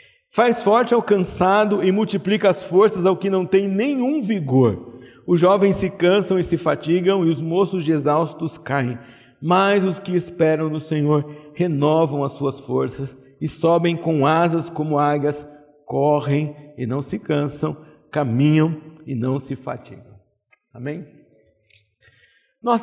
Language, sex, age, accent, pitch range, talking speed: Portuguese, male, 60-79, Brazilian, 155-210 Hz, 145 wpm